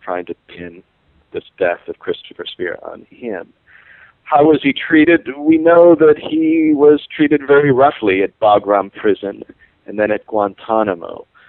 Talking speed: 150 wpm